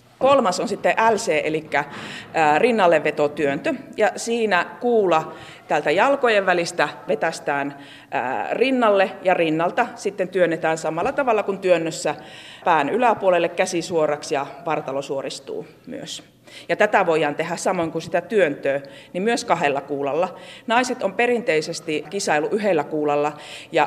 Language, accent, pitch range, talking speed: Finnish, native, 150-185 Hz, 125 wpm